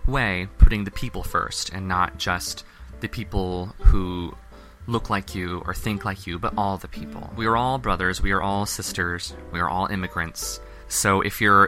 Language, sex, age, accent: English, male, 20-39, American